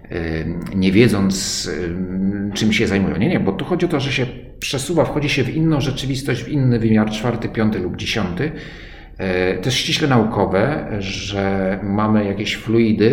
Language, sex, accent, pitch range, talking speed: Polish, male, native, 95-110 Hz, 155 wpm